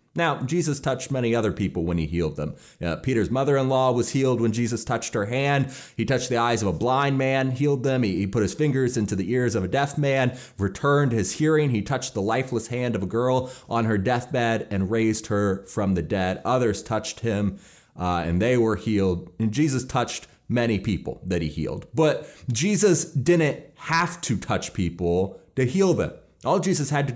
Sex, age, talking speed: male, 30-49, 205 wpm